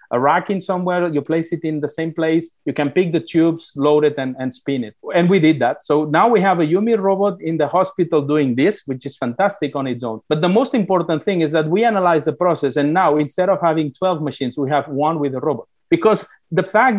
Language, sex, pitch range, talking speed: English, male, 145-185 Hz, 250 wpm